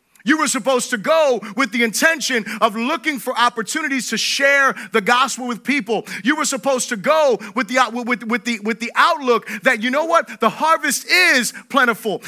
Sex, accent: male, American